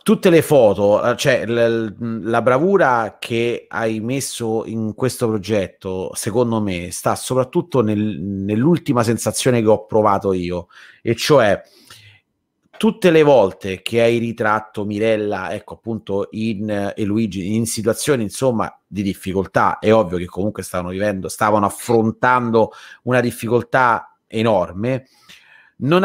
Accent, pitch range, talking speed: native, 105-130 Hz, 120 wpm